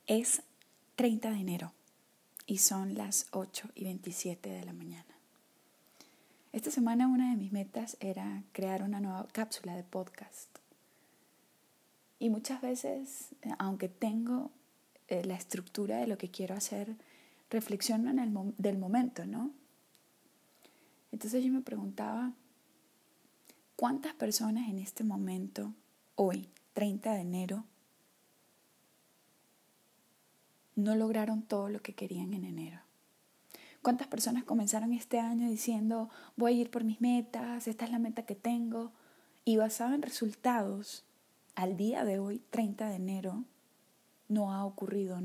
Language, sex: Spanish, female